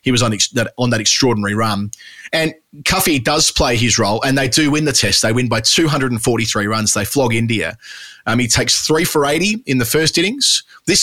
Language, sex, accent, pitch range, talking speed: English, male, Australian, 110-145 Hz, 205 wpm